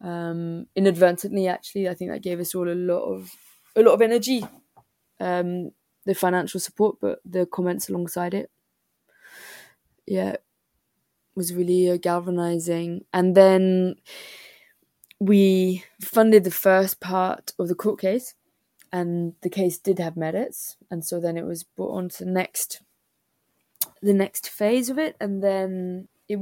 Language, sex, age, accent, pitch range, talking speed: English, female, 20-39, British, 175-195 Hz, 150 wpm